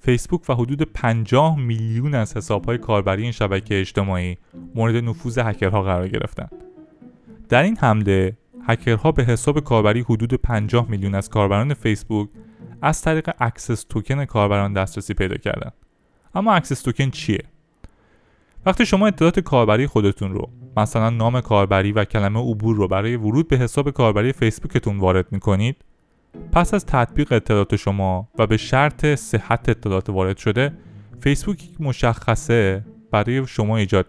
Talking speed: 145 wpm